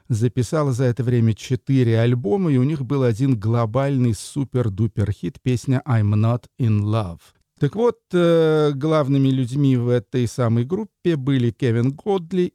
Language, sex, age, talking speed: Russian, male, 50-69, 140 wpm